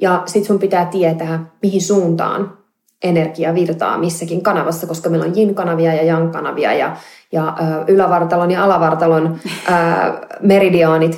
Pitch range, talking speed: 165-195 Hz, 125 wpm